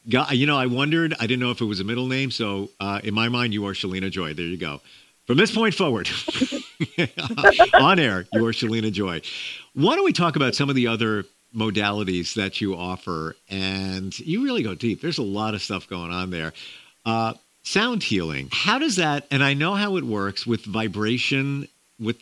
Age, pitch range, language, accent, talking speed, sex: 50-69, 95-135 Hz, English, American, 205 wpm, male